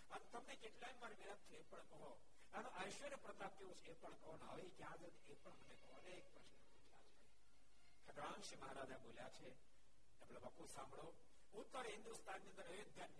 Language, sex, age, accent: Gujarati, male, 60-79, native